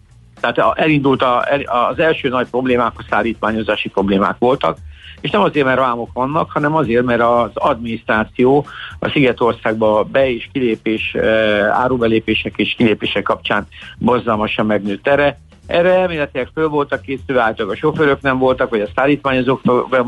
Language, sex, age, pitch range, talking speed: Hungarian, male, 60-79, 110-135 Hz, 145 wpm